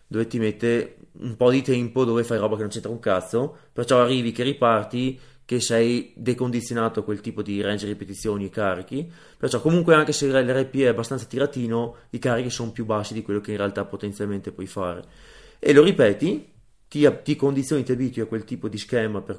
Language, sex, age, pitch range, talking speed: Italian, male, 30-49, 110-135 Hz, 200 wpm